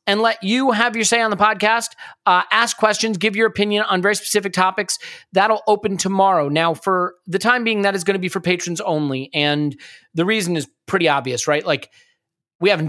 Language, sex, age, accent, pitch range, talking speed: English, male, 30-49, American, 145-190 Hz, 210 wpm